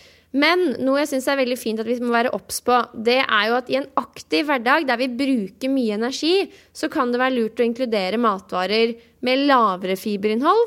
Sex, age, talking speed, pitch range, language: female, 20-39, 225 wpm, 220-275 Hz, English